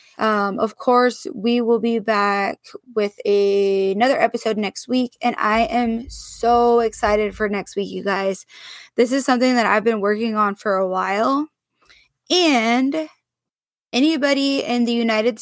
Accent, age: American, 20-39